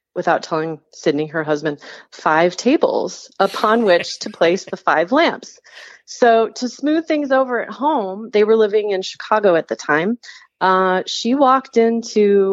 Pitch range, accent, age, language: 175-235 Hz, American, 30-49, English